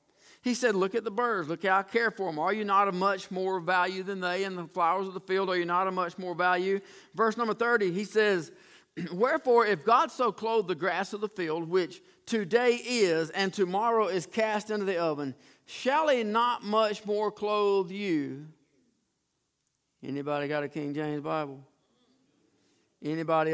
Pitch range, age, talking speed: 150-205 Hz, 50-69, 185 wpm